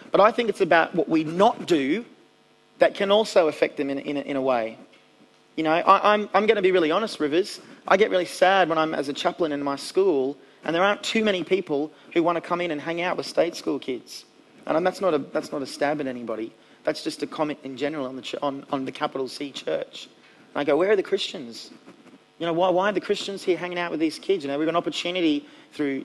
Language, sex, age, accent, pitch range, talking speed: English, male, 30-49, Australian, 145-190 Hz, 255 wpm